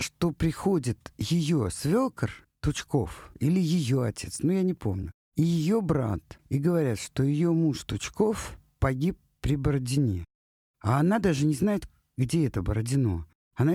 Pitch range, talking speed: 105-150 Hz, 150 wpm